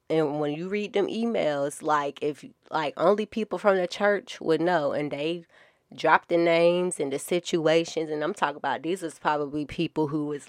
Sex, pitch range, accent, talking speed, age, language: female, 150-180 Hz, American, 195 wpm, 20-39, English